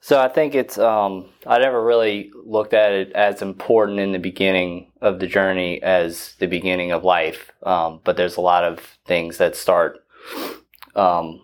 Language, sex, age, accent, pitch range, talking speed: English, male, 20-39, American, 85-100 Hz, 180 wpm